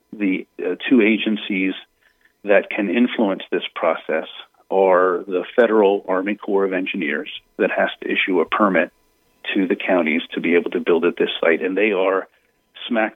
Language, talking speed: English, 170 wpm